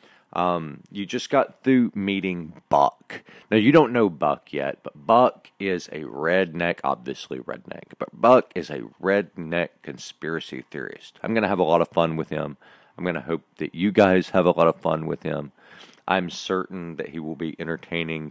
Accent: American